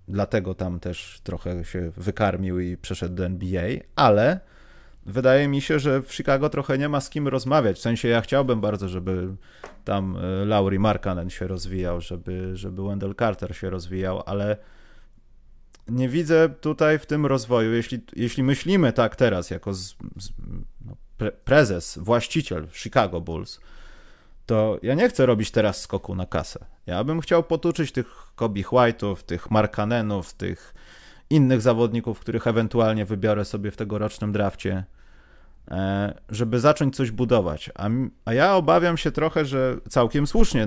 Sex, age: male, 30-49